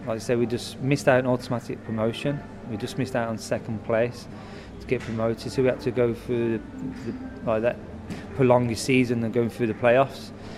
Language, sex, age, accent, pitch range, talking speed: English, male, 20-39, British, 110-125 Hz, 210 wpm